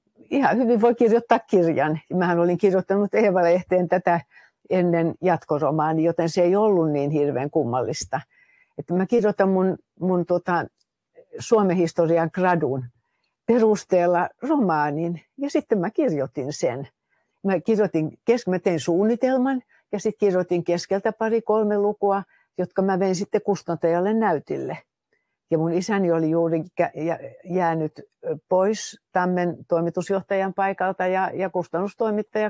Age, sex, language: 60-79, female, Finnish